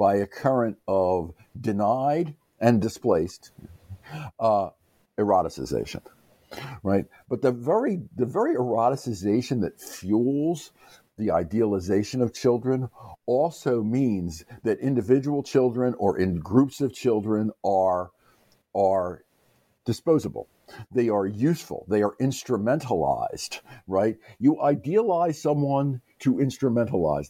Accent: American